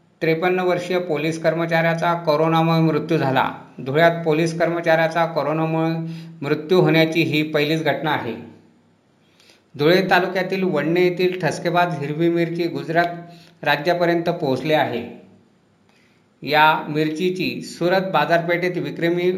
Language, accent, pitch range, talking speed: Marathi, native, 155-175 Hz, 100 wpm